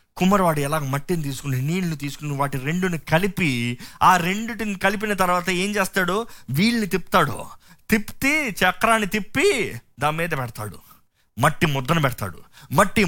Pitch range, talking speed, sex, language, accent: 140-215 Hz, 125 wpm, male, Telugu, native